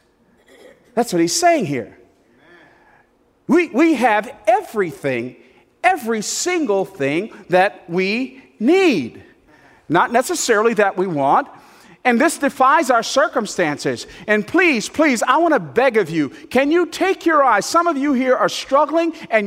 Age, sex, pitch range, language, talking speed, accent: 50-69, male, 240-355 Hz, English, 140 wpm, American